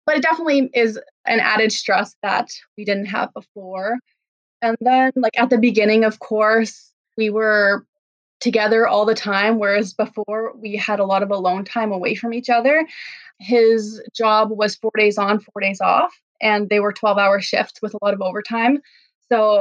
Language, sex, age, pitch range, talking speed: English, female, 20-39, 205-235 Hz, 180 wpm